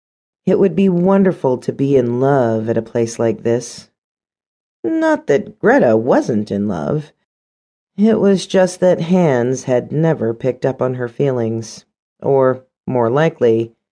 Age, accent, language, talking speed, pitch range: 40-59, American, English, 145 wpm, 115-180 Hz